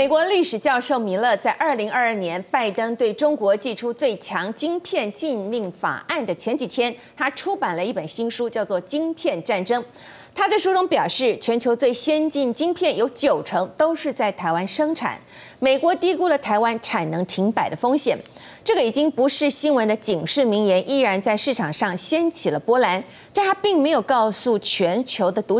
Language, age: Chinese, 30-49